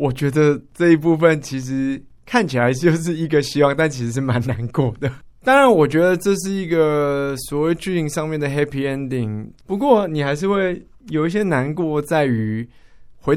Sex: male